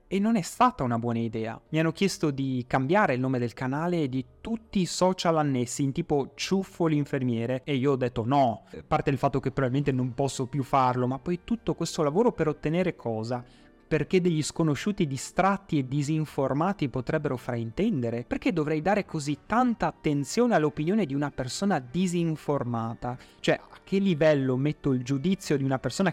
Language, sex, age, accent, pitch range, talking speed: Italian, male, 30-49, native, 125-160 Hz, 180 wpm